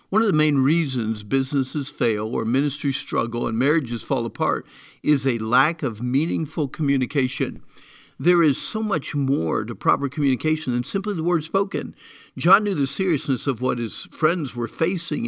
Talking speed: 170 wpm